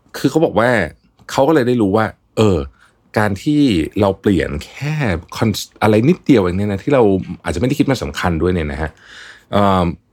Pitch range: 85-110 Hz